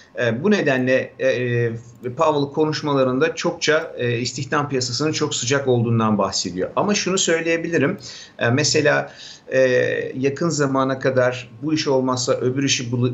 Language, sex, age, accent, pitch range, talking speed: Turkish, male, 50-69, native, 120-150 Hz, 130 wpm